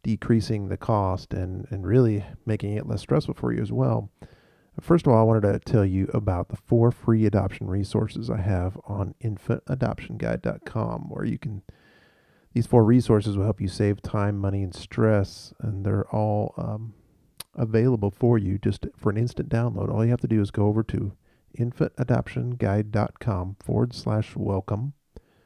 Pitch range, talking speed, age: 100-115 Hz, 165 wpm, 40-59